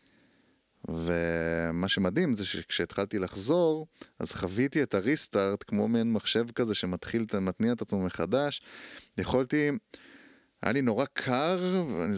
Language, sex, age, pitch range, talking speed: Hebrew, male, 30-49, 90-120 Hz, 115 wpm